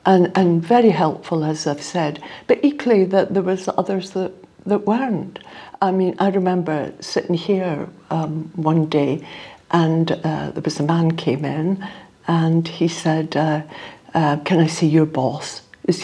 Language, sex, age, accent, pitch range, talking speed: English, female, 60-79, British, 160-195 Hz, 165 wpm